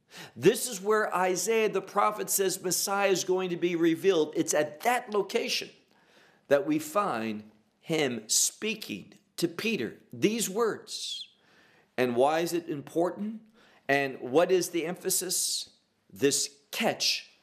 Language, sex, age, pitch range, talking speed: English, male, 50-69, 140-210 Hz, 130 wpm